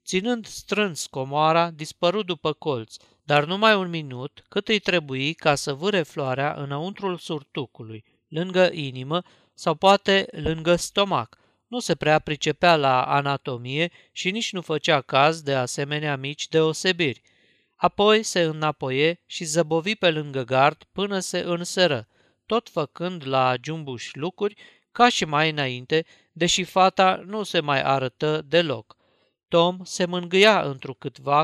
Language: Romanian